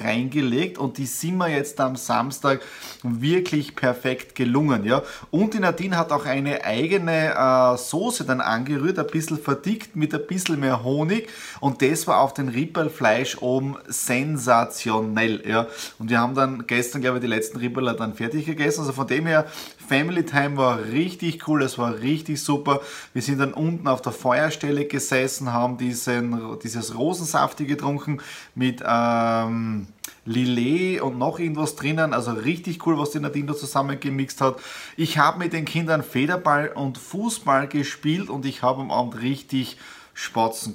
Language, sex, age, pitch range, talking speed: German, male, 20-39, 125-155 Hz, 165 wpm